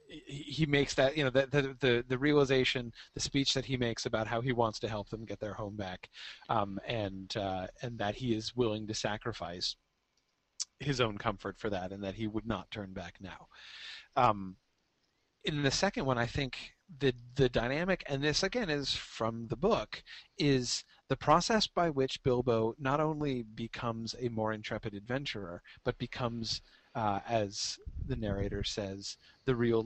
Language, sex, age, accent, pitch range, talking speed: English, male, 40-59, American, 105-135 Hz, 175 wpm